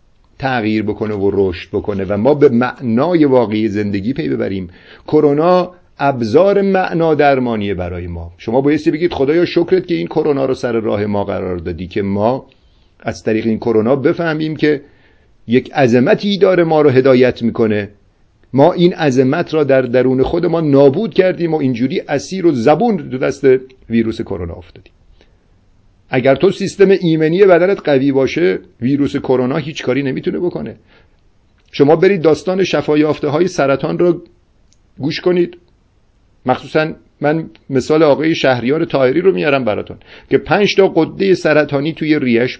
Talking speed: 150 wpm